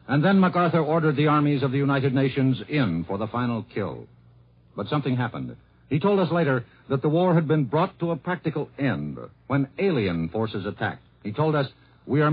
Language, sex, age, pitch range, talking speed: English, male, 60-79, 120-165 Hz, 200 wpm